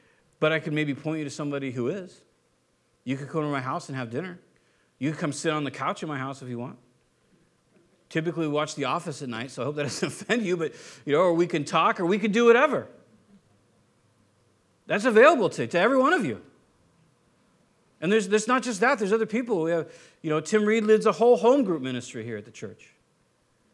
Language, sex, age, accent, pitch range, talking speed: English, male, 50-69, American, 145-230 Hz, 230 wpm